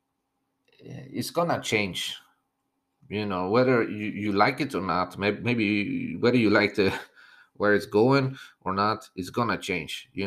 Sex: male